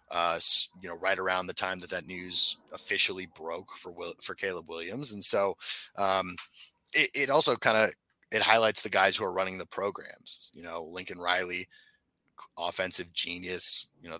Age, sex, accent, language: 30-49, male, American, English